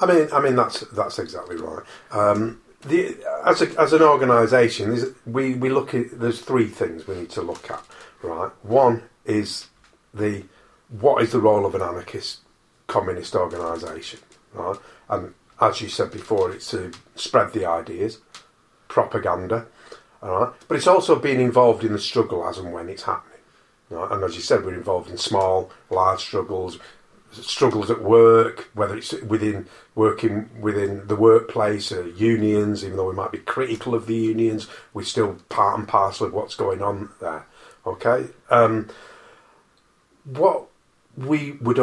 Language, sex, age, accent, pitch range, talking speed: English, male, 40-59, British, 105-155 Hz, 165 wpm